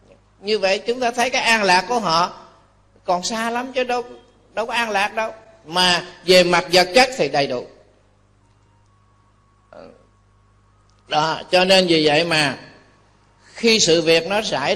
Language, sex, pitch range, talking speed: Vietnamese, male, 125-200 Hz, 160 wpm